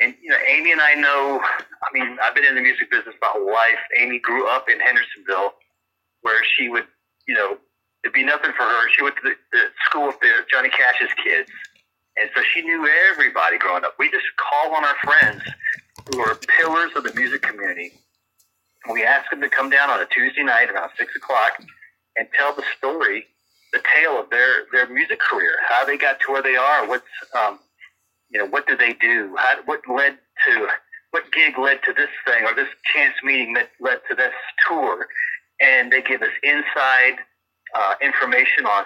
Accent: American